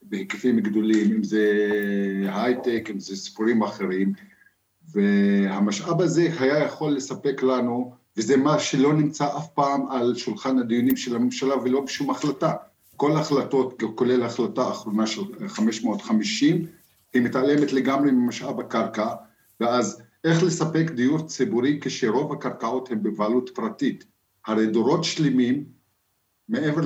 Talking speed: 125 wpm